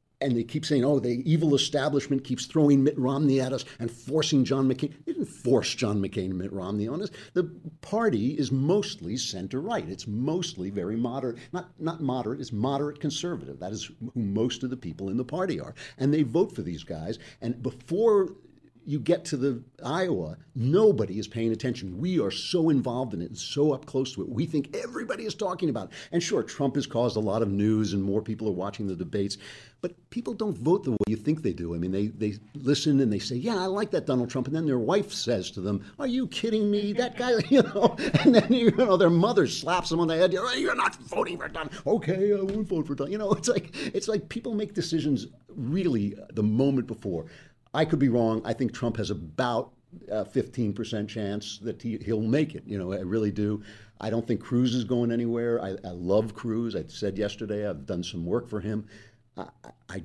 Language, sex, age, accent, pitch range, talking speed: English, male, 50-69, American, 110-160 Hz, 225 wpm